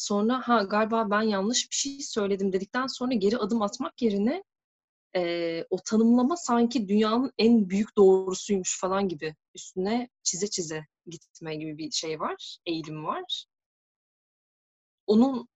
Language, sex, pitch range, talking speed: Turkish, female, 175-235 Hz, 135 wpm